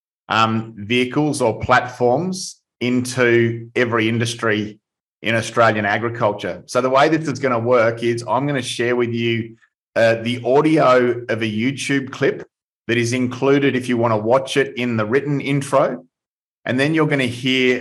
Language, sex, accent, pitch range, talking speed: English, male, Australian, 115-130 Hz, 170 wpm